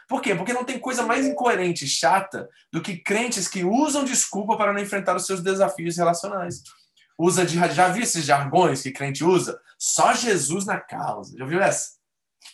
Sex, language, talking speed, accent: male, Portuguese, 185 wpm, Brazilian